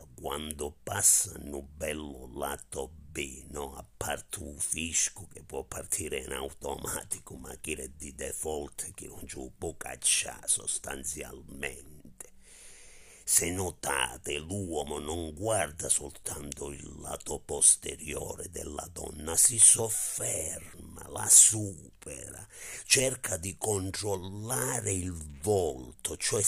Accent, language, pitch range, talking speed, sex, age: native, Italian, 80-110 Hz, 110 wpm, male, 50-69